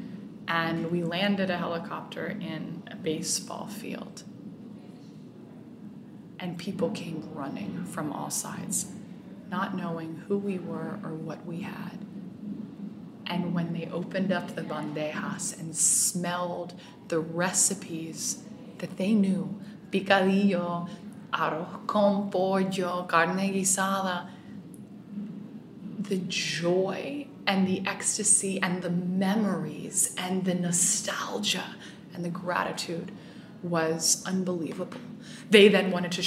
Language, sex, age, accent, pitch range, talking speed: English, female, 20-39, American, 175-205 Hz, 110 wpm